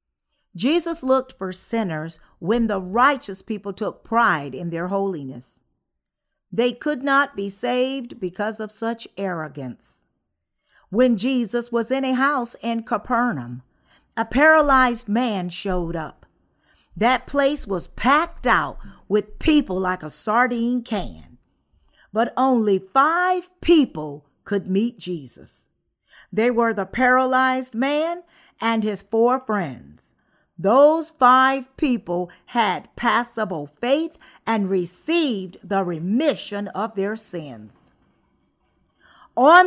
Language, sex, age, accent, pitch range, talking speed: English, female, 50-69, American, 185-265 Hz, 115 wpm